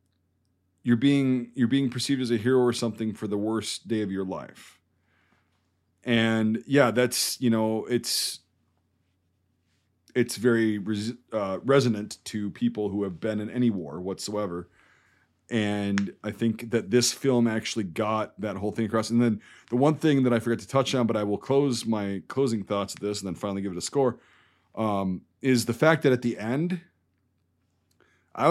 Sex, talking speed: male, 175 wpm